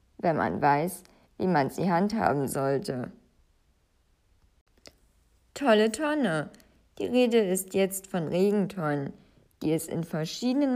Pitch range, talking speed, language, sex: 175-230 Hz, 110 wpm, German, female